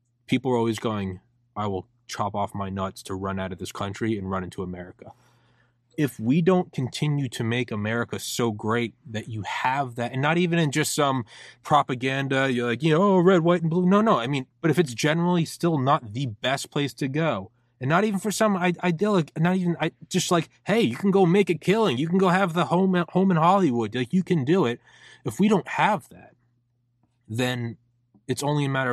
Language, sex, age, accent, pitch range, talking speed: English, male, 20-39, American, 115-150 Hz, 220 wpm